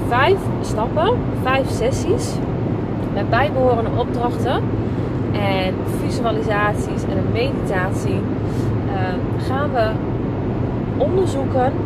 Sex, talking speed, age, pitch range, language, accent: female, 80 wpm, 20-39, 110-125 Hz, Dutch, Dutch